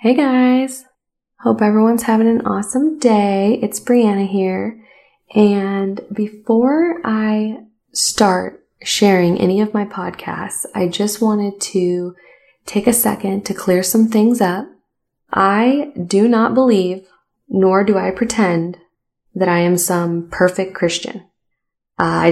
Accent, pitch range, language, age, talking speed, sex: American, 175-225 Hz, English, 20-39, 130 wpm, female